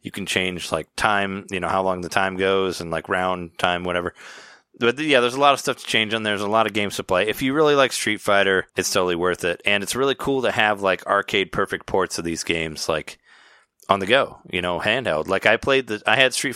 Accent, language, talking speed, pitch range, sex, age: American, English, 250 wpm, 90-120 Hz, male, 20-39